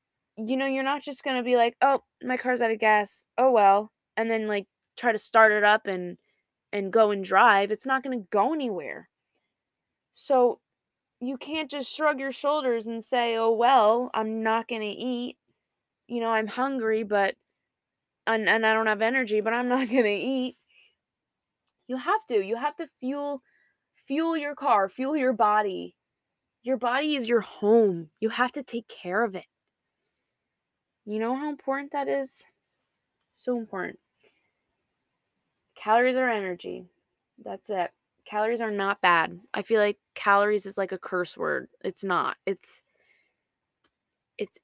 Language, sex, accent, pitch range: English, female, American, 205-255 Hz